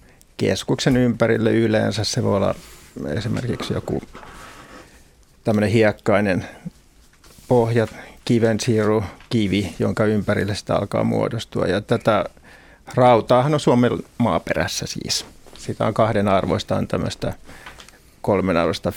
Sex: male